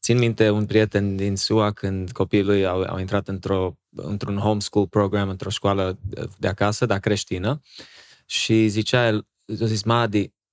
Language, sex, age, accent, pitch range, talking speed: Romanian, male, 20-39, Croatian, 100-115 Hz, 155 wpm